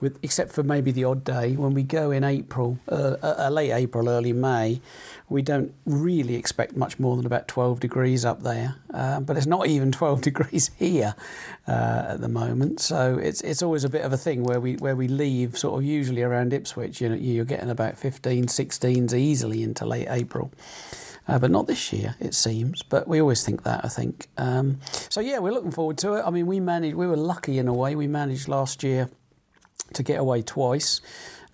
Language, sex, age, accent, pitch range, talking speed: English, male, 40-59, British, 120-145 Hz, 215 wpm